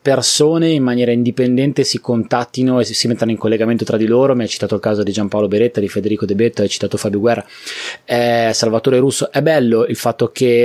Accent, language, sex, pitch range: native, Italian, male, 110-135 Hz